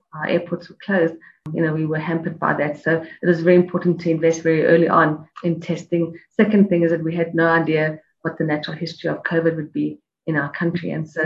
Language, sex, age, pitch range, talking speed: English, female, 30-49, 155-175 Hz, 235 wpm